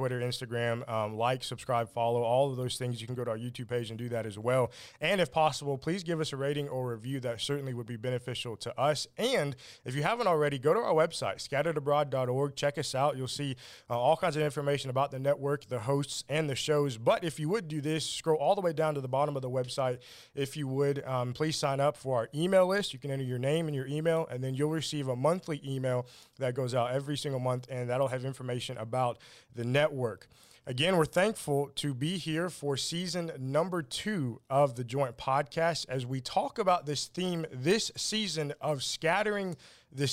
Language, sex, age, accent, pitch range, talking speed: English, male, 20-39, American, 130-160 Hz, 225 wpm